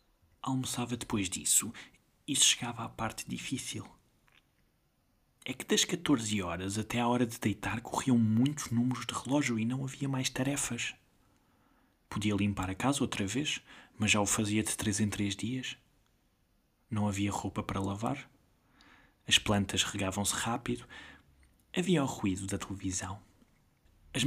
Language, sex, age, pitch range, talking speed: Portuguese, male, 20-39, 100-125 Hz, 145 wpm